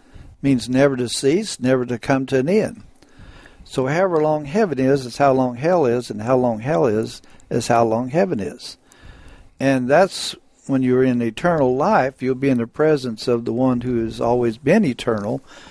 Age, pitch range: 60-79, 120-150 Hz